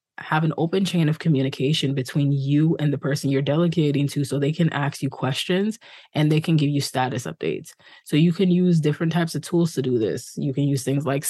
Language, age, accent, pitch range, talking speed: English, 20-39, American, 140-165 Hz, 230 wpm